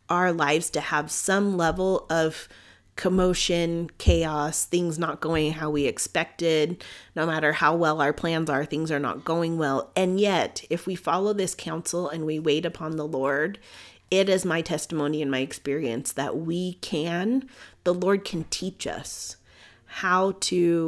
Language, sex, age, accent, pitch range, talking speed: English, female, 30-49, American, 150-185 Hz, 165 wpm